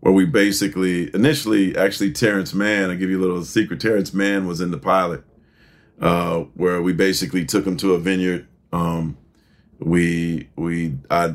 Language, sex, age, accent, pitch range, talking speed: English, male, 40-59, American, 85-95 Hz, 170 wpm